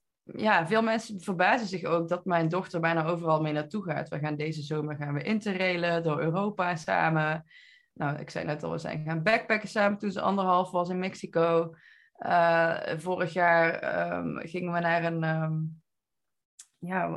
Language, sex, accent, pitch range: Dutch, female, Dutch, 165-220 Hz